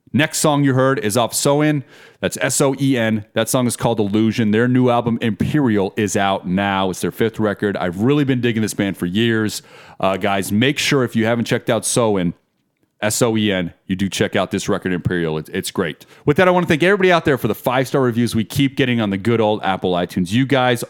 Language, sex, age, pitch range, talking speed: English, male, 30-49, 95-125 Hz, 225 wpm